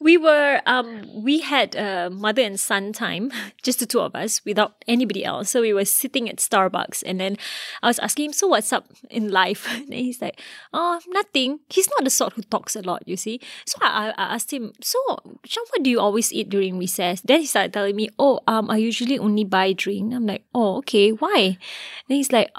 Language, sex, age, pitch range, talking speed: English, female, 20-39, 205-270 Hz, 220 wpm